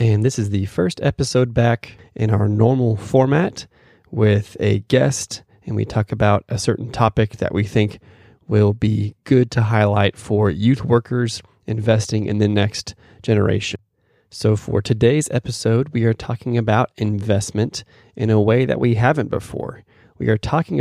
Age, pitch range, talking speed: 30-49, 105-120 Hz, 160 wpm